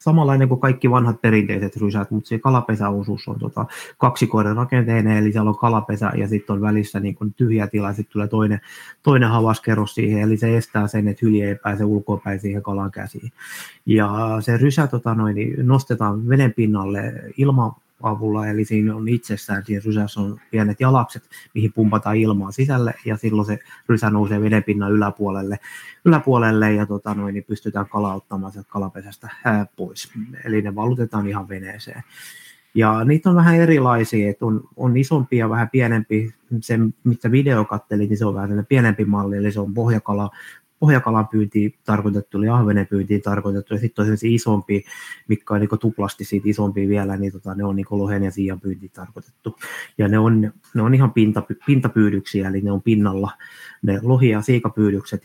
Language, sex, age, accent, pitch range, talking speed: Finnish, male, 20-39, native, 100-115 Hz, 170 wpm